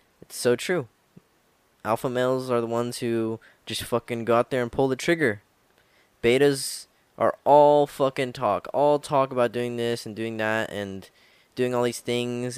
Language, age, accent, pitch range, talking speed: English, 10-29, American, 105-125 Hz, 160 wpm